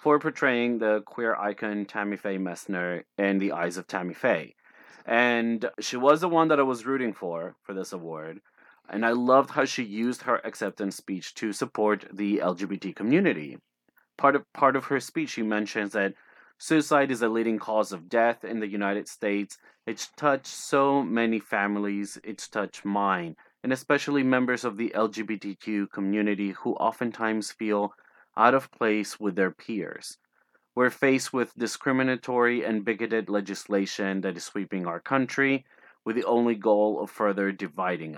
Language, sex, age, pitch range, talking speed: English, male, 30-49, 100-120 Hz, 160 wpm